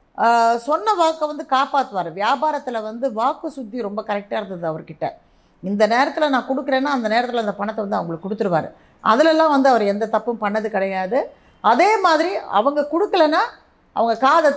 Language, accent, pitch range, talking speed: Tamil, native, 190-270 Hz, 150 wpm